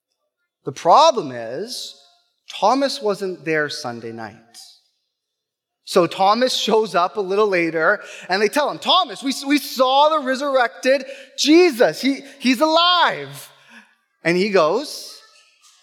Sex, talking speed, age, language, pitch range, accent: male, 120 wpm, 30-49, English, 170-260 Hz, American